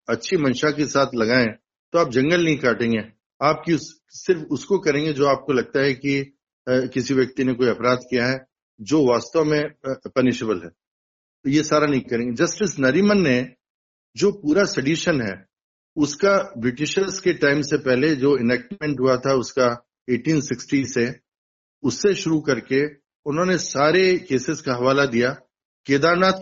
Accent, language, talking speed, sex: native, Hindi, 150 wpm, male